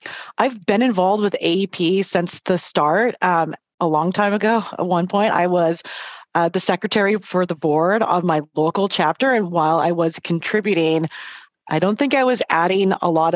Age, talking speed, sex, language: 30-49, 185 wpm, female, English